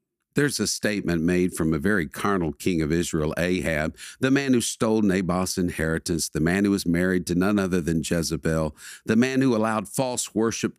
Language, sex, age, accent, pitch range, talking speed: English, male, 50-69, American, 90-140 Hz, 190 wpm